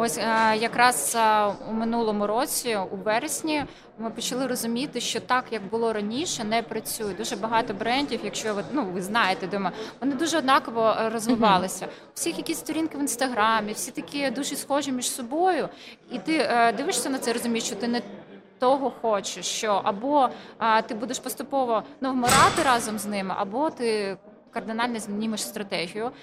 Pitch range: 210-250 Hz